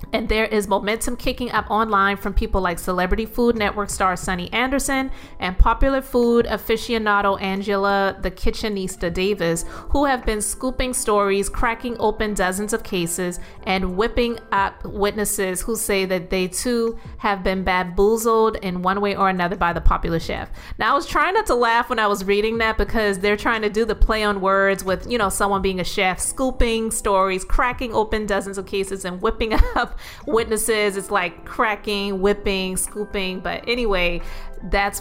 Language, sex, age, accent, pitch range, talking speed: English, female, 30-49, American, 195-225 Hz, 175 wpm